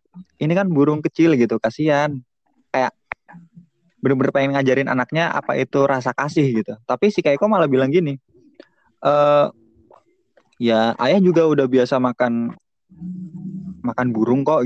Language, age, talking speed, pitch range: Indonesian, 20-39, 130 wpm, 115-160 Hz